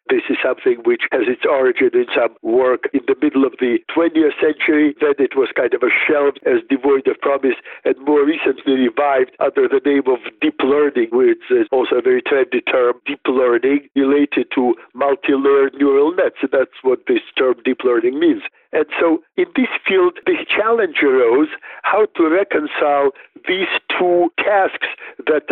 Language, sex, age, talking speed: English, male, 60-79, 175 wpm